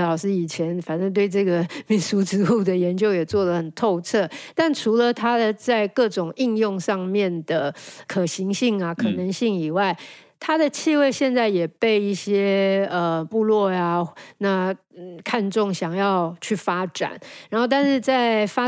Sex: female